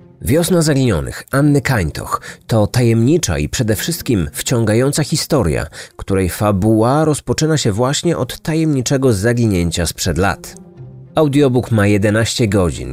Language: Polish